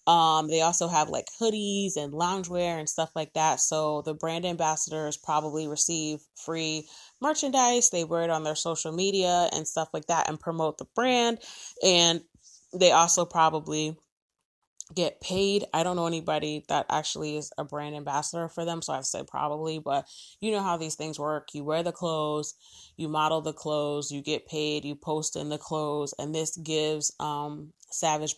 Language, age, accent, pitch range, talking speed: English, 20-39, American, 150-175 Hz, 180 wpm